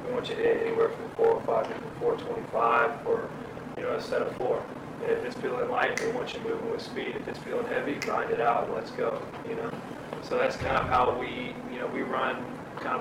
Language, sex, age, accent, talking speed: English, male, 30-49, American, 240 wpm